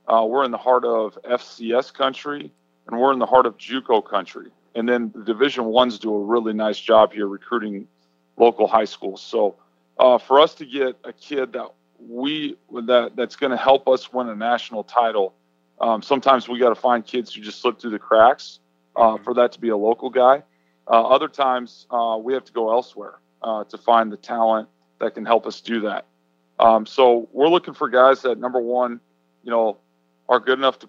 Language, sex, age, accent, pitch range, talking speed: English, male, 40-59, American, 105-125 Hz, 205 wpm